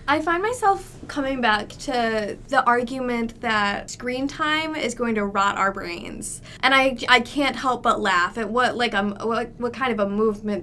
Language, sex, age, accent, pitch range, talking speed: English, female, 20-39, American, 210-250 Hz, 190 wpm